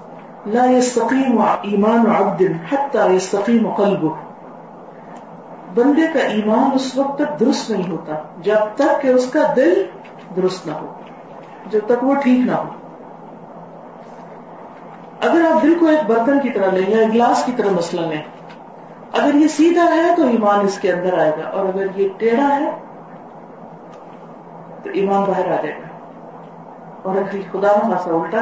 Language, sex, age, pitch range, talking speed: Urdu, female, 40-59, 190-260 Hz, 165 wpm